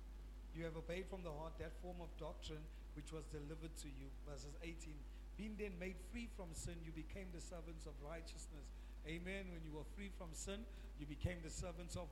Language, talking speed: English, 205 wpm